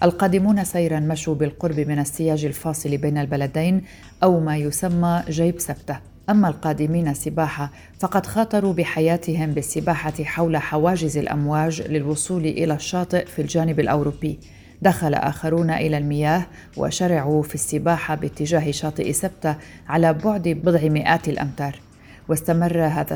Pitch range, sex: 150-170 Hz, female